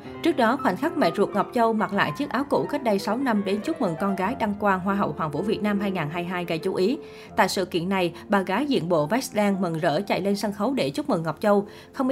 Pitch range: 190-235 Hz